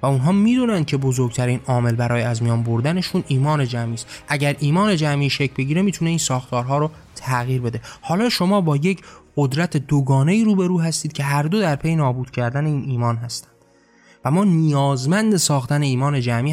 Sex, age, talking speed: male, 20-39, 180 wpm